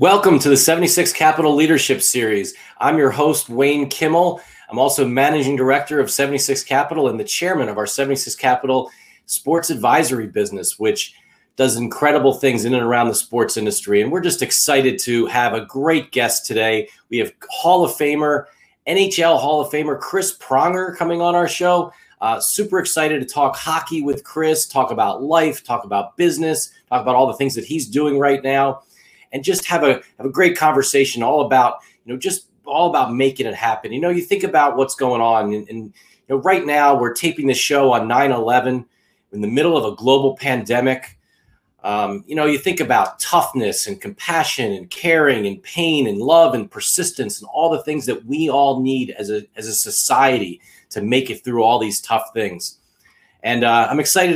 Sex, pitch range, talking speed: male, 125-165 Hz, 195 wpm